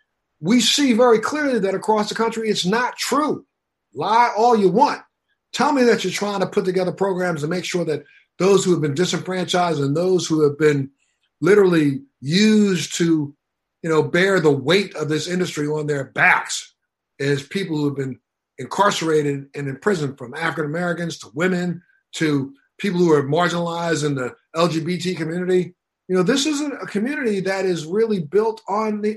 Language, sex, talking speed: English, male, 175 wpm